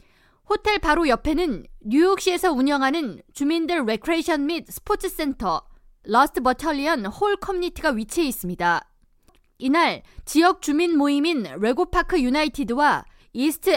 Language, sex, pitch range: Korean, female, 255-345 Hz